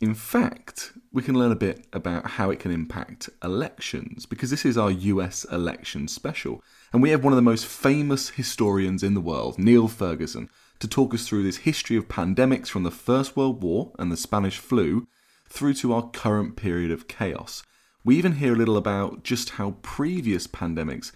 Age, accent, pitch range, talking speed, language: 30-49, British, 95-125 Hz, 195 wpm, English